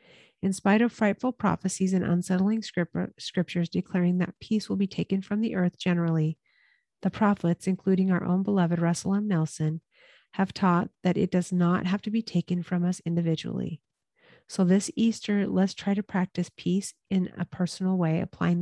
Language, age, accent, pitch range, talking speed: English, 40-59, American, 175-200 Hz, 170 wpm